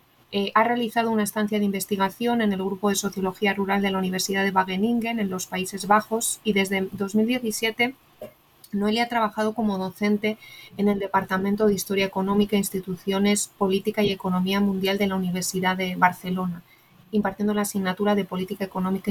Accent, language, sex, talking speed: Spanish, Spanish, female, 165 wpm